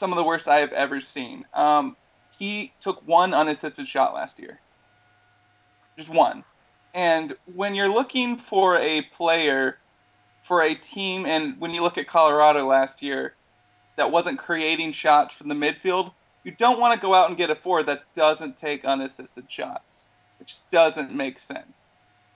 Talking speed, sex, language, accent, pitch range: 165 wpm, male, English, American, 140-190 Hz